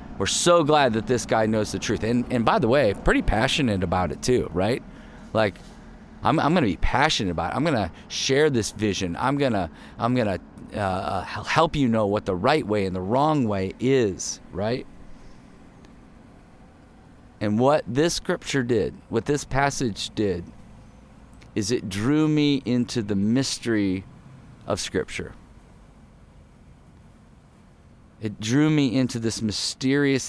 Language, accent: English, American